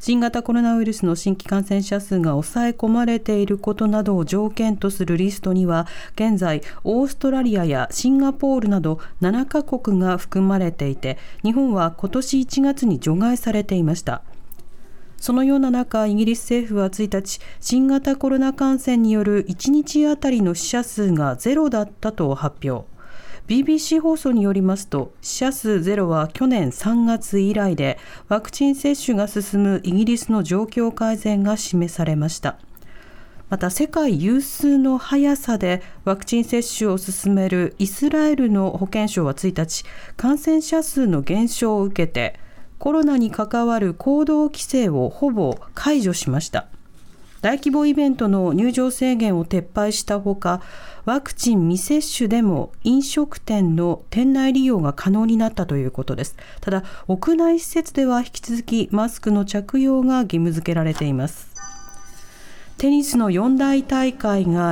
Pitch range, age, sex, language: 185-260 Hz, 40-59, female, Japanese